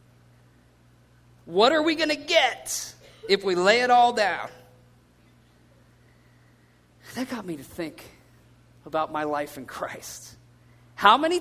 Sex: male